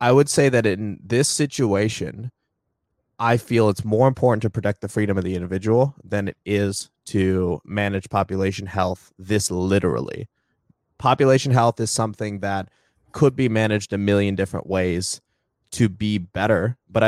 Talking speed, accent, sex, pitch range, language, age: 155 wpm, American, male, 95-115 Hz, English, 20-39